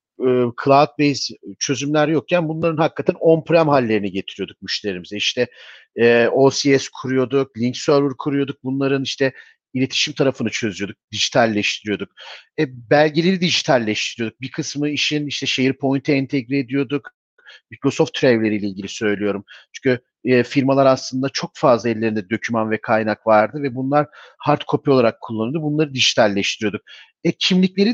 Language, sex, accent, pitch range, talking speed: Turkish, male, native, 125-155 Hz, 120 wpm